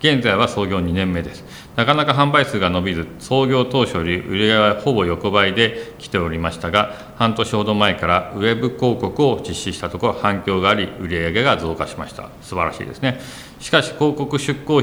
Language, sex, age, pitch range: Japanese, male, 40-59, 85-125 Hz